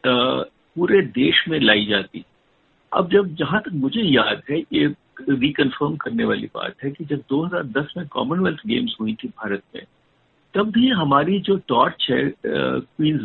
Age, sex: 50-69, male